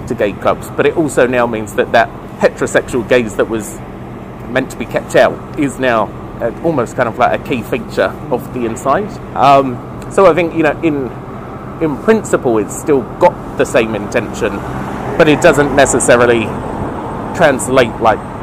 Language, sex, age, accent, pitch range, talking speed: English, male, 30-49, British, 110-150 Hz, 170 wpm